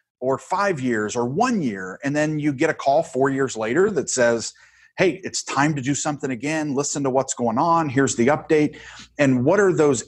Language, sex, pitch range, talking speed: English, male, 120-145 Hz, 215 wpm